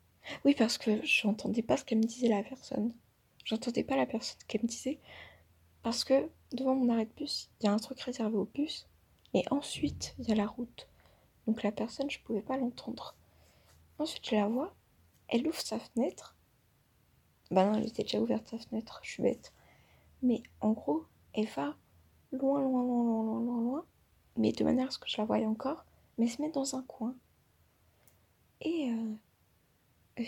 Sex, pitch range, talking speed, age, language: female, 215-255 Hz, 195 wpm, 20-39, French